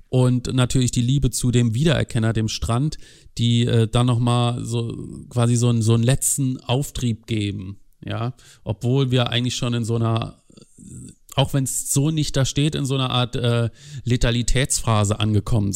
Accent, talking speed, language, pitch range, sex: German, 170 wpm, German, 110-125 Hz, male